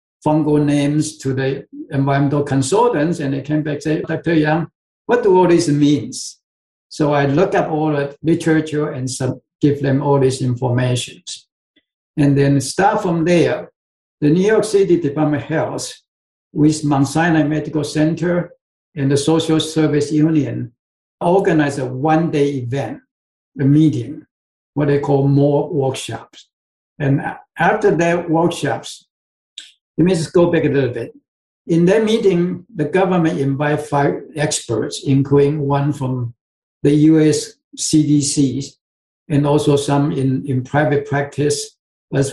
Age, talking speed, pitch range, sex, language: 60-79, 140 wpm, 140-160 Hz, male, English